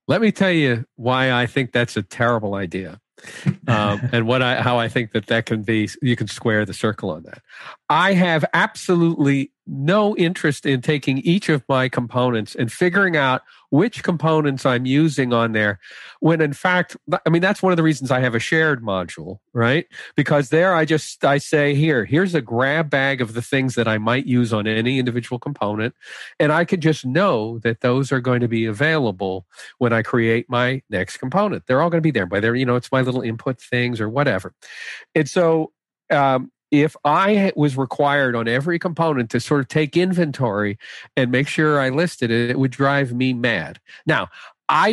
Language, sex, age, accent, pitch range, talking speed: English, male, 50-69, American, 120-155 Hz, 200 wpm